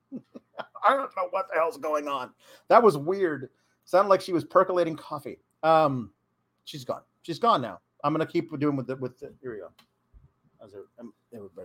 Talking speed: 170 wpm